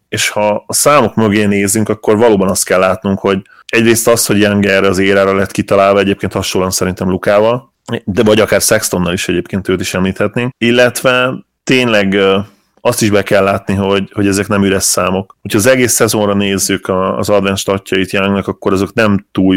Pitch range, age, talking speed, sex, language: 95-110 Hz, 30-49, 180 wpm, male, Hungarian